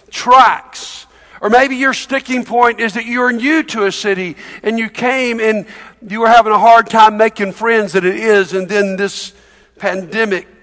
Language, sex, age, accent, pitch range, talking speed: English, male, 50-69, American, 195-240 Hz, 180 wpm